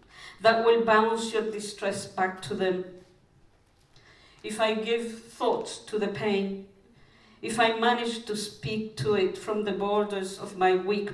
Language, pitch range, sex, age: English, 185-220 Hz, female, 50-69